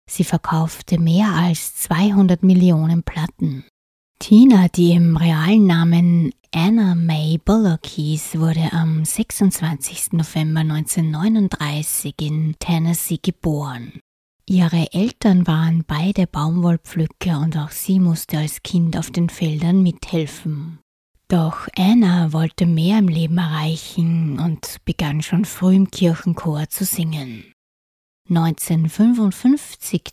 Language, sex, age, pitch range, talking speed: German, female, 20-39, 155-180 Hz, 110 wpm